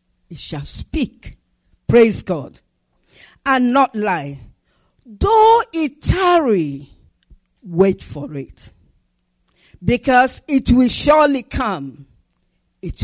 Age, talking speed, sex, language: 50-69, 90 wpm, female, English